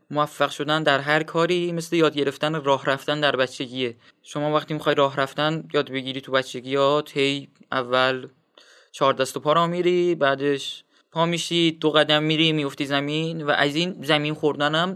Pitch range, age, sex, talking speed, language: 140-165 Hz, 20-39, male, 175 wpm, Persian